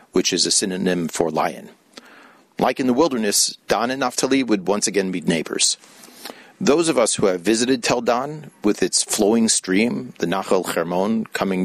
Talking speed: 175 wpm